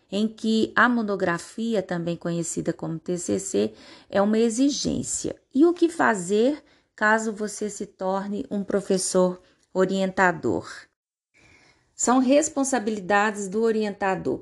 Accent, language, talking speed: Brazilian, Portuguese, 110 wpm